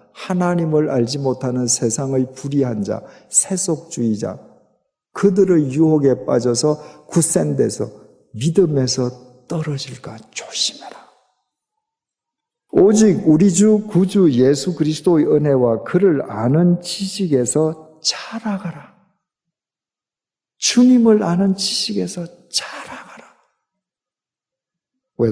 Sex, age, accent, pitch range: male, 50-69, native, 120-180 Hz